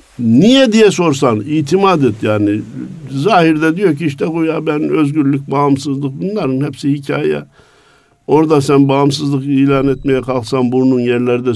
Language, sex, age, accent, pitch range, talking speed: Turkish, male, 60-79, native, 115-145 Hz, 135 wpm